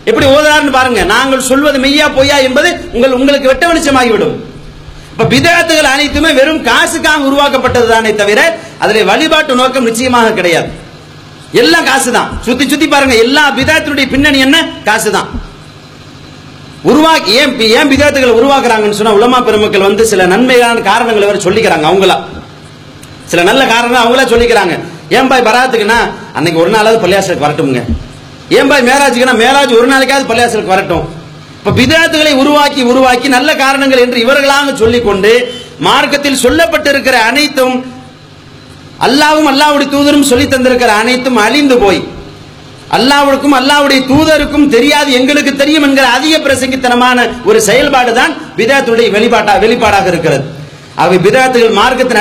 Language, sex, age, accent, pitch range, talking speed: English, male, 40-59, Indian, 220-280 Hz, 50 wpm